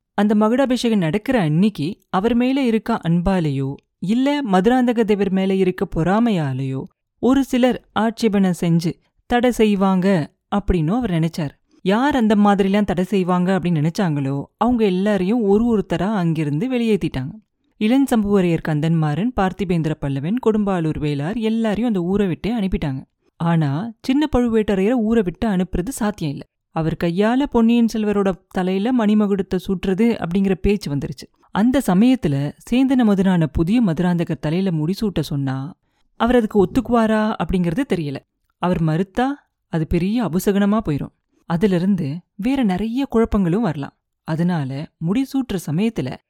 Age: 30-49